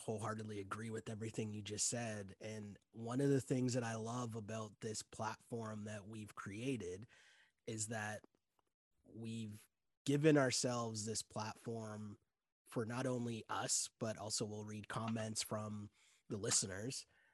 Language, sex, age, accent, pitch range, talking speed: English, male, 20-39, American, 105-120 Hz, 140 wpm